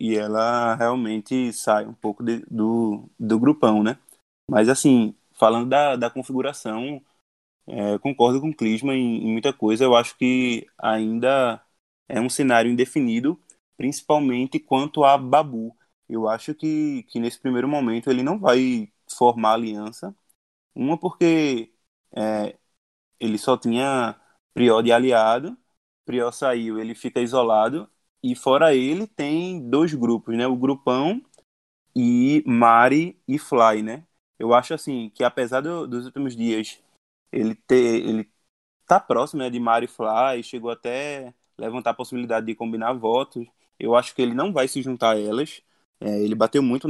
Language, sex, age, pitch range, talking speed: Portuguese, male, 20-39, 110-135 Hz, 150 wpm